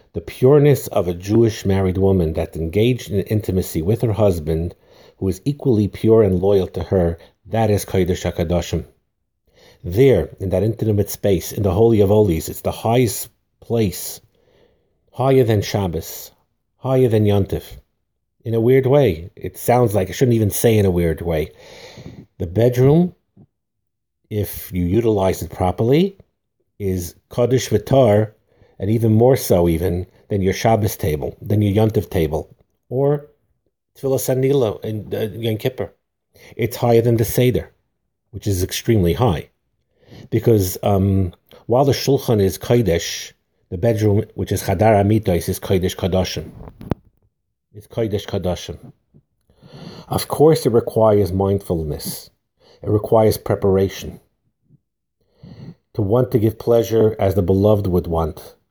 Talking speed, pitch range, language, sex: 140 wpm, 95-115 Hz, English, male